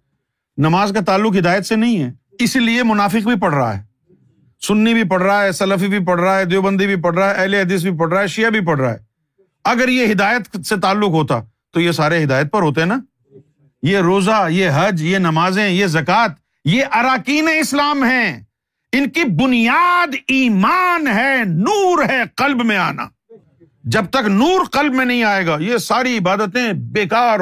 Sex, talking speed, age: male, 190 wpm, 50-69